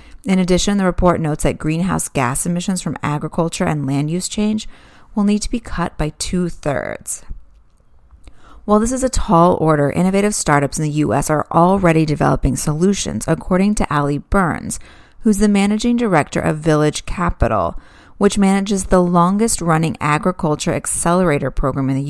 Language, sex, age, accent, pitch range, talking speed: English, female, 30-49, American, 145-195 Hz, 155 wpm